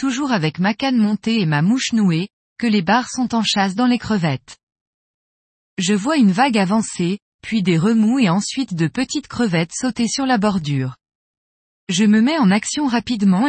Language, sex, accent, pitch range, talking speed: French, female, French, 185-245 Hz, 180 wpm